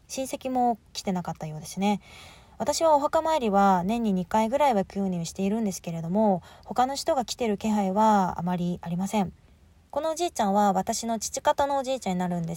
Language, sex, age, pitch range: Japanese, female, 20-39, 180-245 Hz